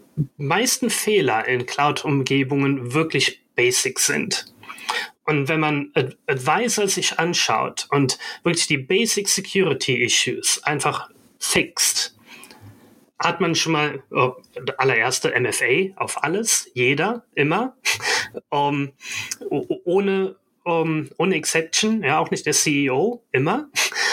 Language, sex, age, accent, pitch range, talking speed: German, male, 30-49, German, 130-180 Hz, 110 wpm